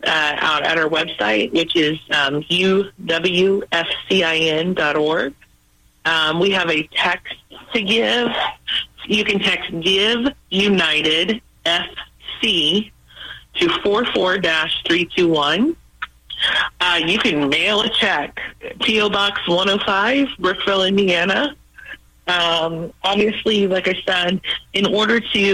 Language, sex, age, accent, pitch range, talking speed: English, female, 30-49, American, 160-195 Hz, 100 wpm